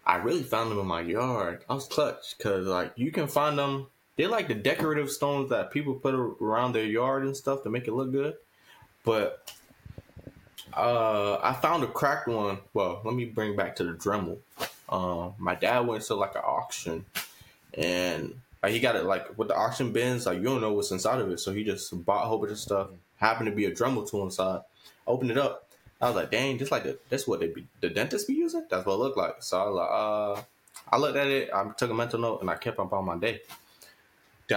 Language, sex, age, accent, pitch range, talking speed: English, male, 20-39, American, 105-135 Hz, 230 wpm